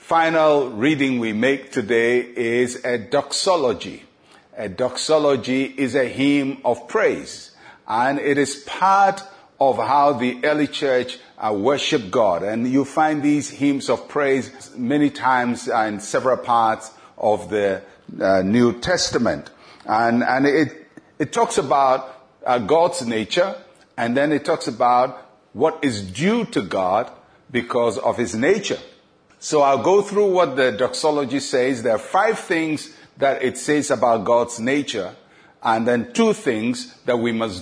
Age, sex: 50-69, male